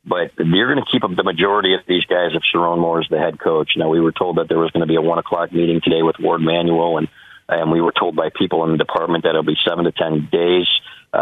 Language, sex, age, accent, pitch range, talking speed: English, male, 40-59, American, 85-95 Hz, 290 wpm